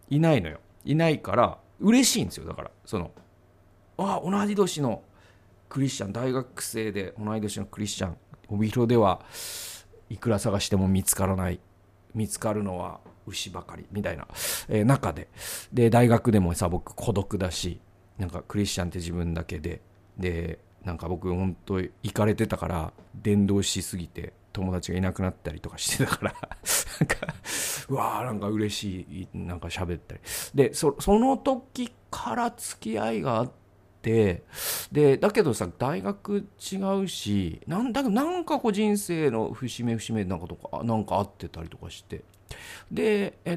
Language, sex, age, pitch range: Japanese, male, 40-59, 95-125 Hz